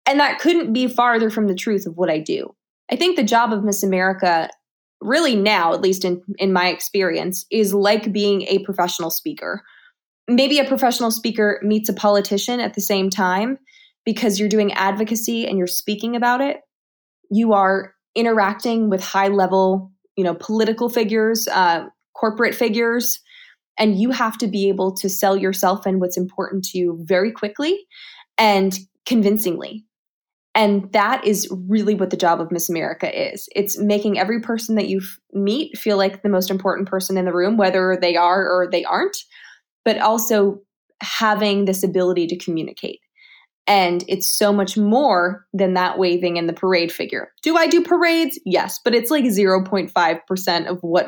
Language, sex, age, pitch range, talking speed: English, female, 20-39, 185-225 Hz, 175 wpm